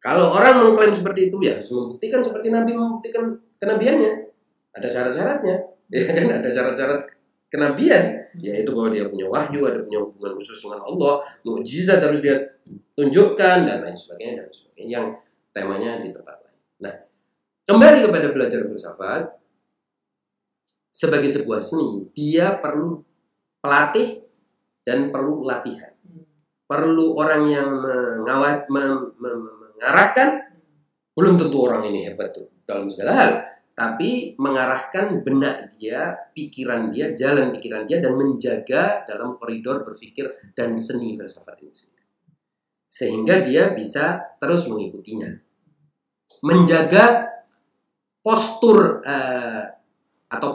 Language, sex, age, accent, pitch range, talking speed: Indonesian, male, 30-49, native, 130-195 Hz, 120 wpm